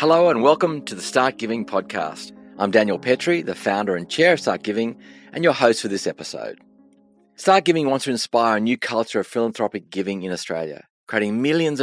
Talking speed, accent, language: 200 wpm, Australian, English